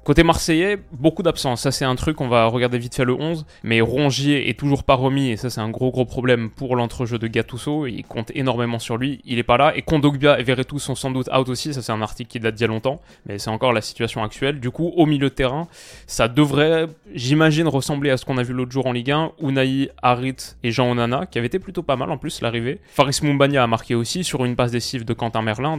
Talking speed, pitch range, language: 260 wpm, 125-145 Hz, French